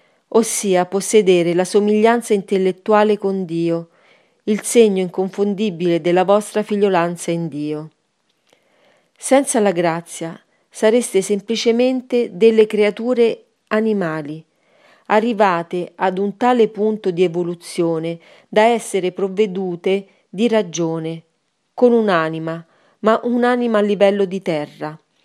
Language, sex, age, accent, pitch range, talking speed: Italian, female, 40-59, native, 175-215 Hz, 100 wpm